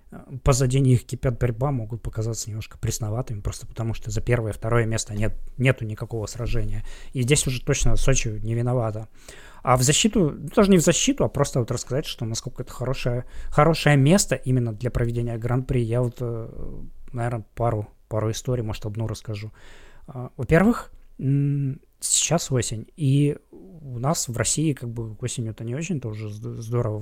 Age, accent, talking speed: 20-39, native, 160 wpm